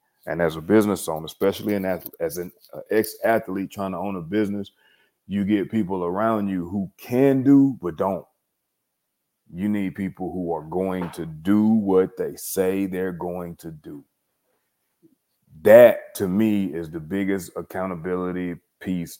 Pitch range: 90-105 Hz